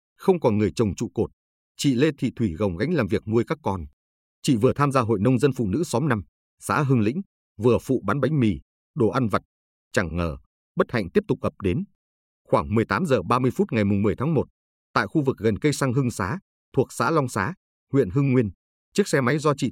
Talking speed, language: 230 wpm, Vietnamese